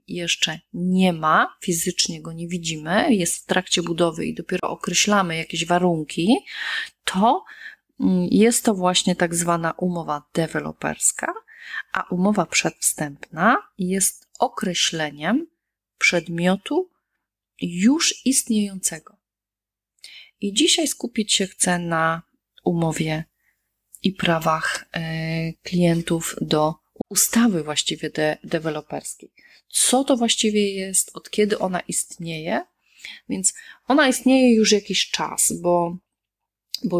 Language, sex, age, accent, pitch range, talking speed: Polish, female, 30-49, native, 170-215 Hz, 100 wpm